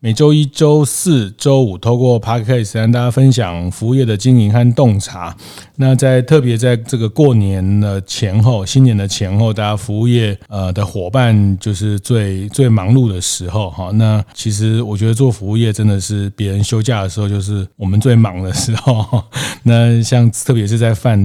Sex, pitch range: male, 100-120 Hz